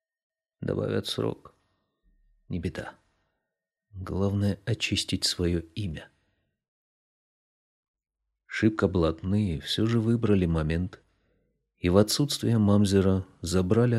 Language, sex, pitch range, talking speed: Russian, male, 85-110 Hz, 80 wpm